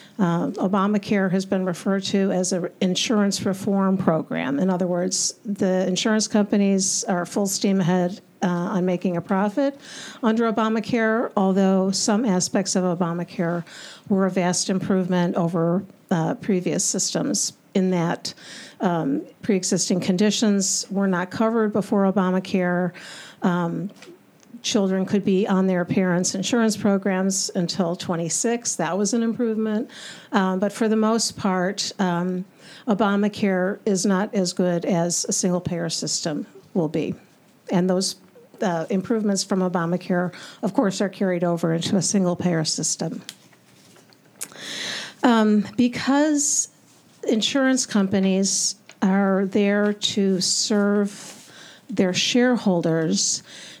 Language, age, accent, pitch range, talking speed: English, 50-69, American, 180-210 Hz, 120 wpm